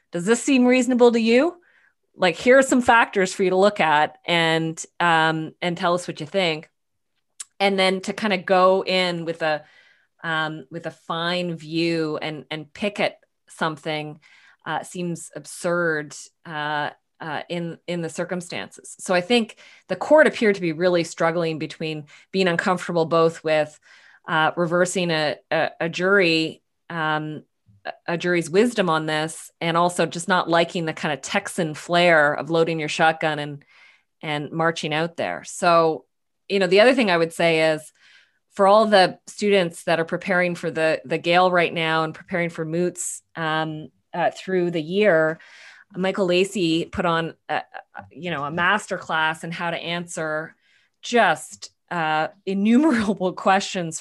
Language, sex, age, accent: English, female, 20-39, American